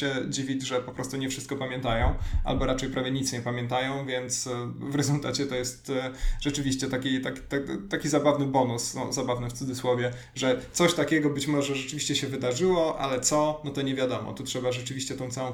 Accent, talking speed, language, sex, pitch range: native, 185 wpm, Polish, male, 125-140 Hz